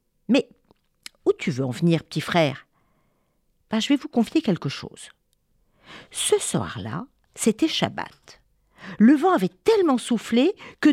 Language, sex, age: French, female, 50-69